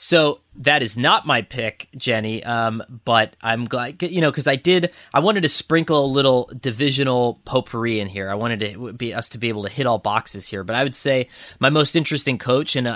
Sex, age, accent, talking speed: male, 30-49, American, 230 wpm